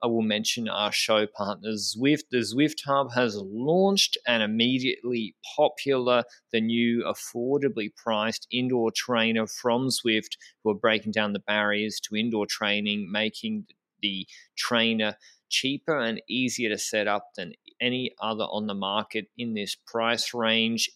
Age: 20-39